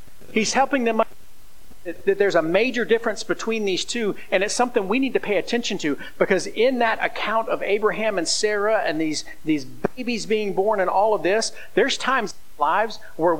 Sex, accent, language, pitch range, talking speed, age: male, American, English, 150-225 Hz, 200 wpm, 50-69